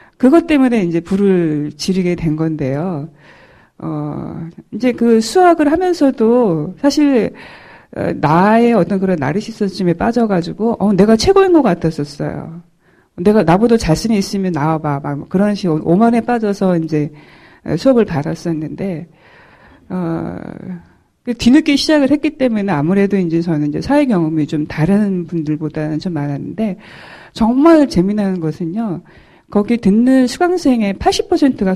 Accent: native